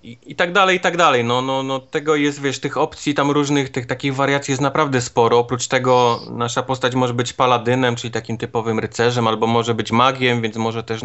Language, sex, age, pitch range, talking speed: Polish, male, 30-49, 115-130 Hz, 225 wpm